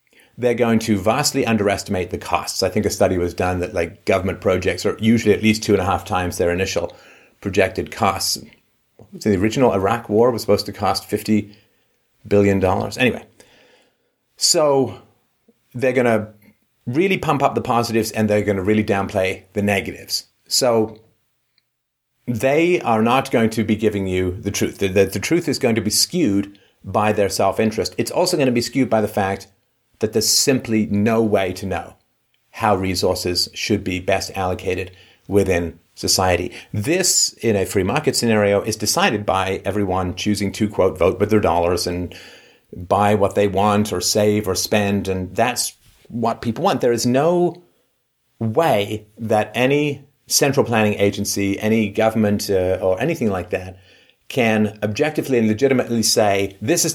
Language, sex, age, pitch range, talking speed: English, male, 30-49, 100-115 Hz, 170 wpm